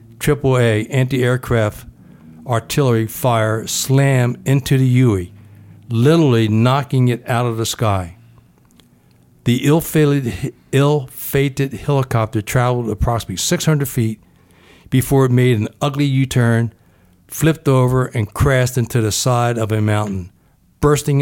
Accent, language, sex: American, English, male